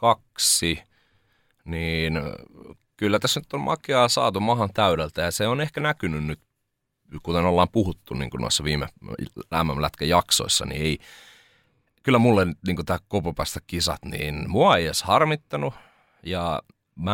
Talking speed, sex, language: 135 wpm, male, Finnish